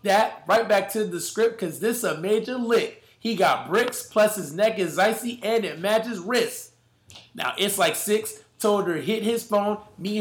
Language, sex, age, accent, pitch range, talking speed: English, male, 20-39, American, 190-225 Hz, 195 wpm